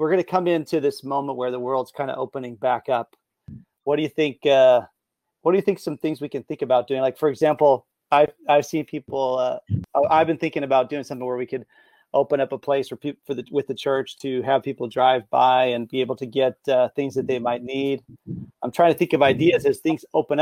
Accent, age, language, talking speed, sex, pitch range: American, 30-49, English, 245 wpm, male, 130-150 Hz